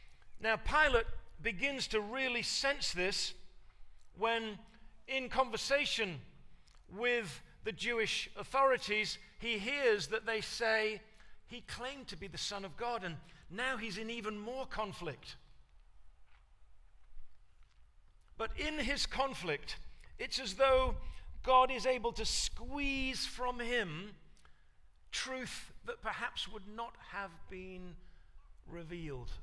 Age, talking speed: 50-69, 115 wpm